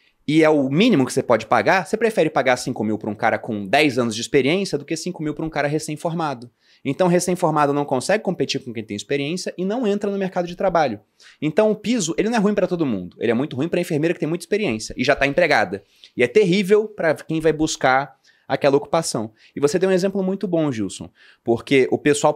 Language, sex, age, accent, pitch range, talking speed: Portuguese, male, 20-39, Brazilian, 130-185 Hz, 240 wpm